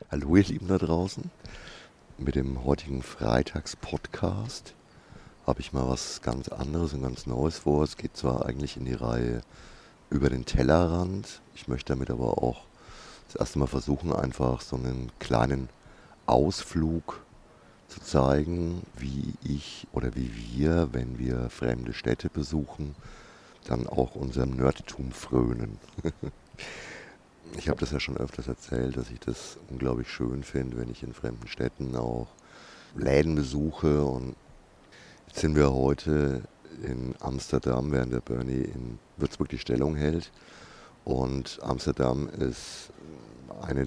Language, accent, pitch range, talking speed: German, German, 65-75 Hz, 135 wpm